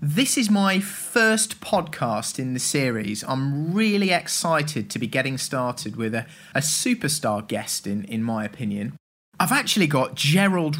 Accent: British